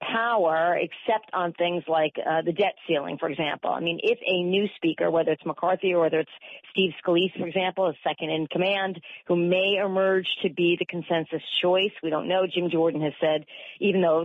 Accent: American